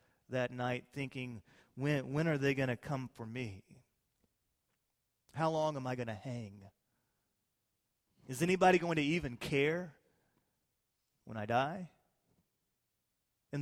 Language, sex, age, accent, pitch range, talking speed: English, male, 40-59, American, 140-220 Hz, 130 wpm